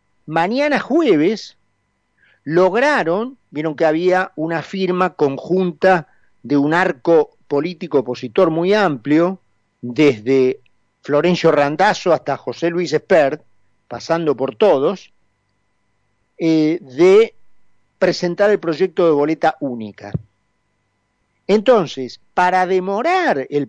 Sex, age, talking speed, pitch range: male, 50-69, 95 wpm, 125-185 Hz